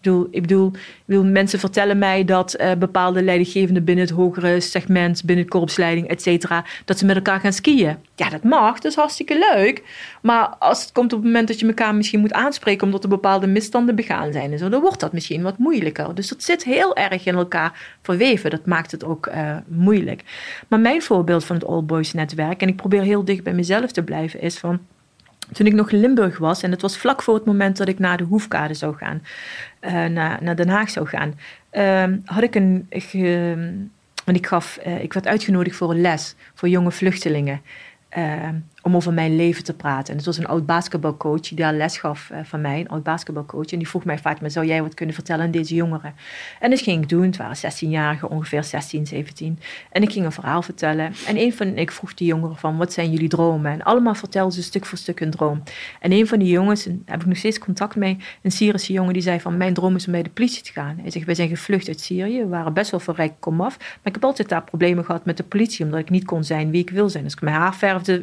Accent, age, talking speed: Dutch, 40-59, 245 wpm